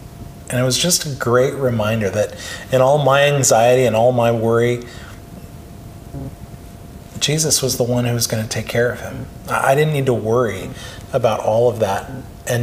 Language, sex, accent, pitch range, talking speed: English, male, American, 110-135 Hz, 180 wpm